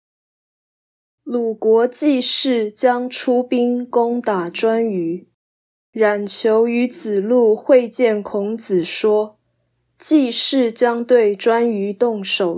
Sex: female